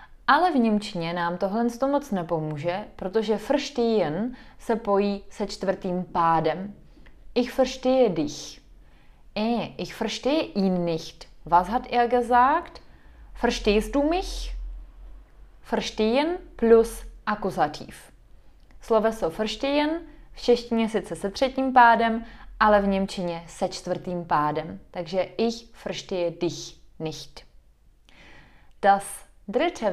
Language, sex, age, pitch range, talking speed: Czech, female, 20-39, 180-230 Hz, 110 wpm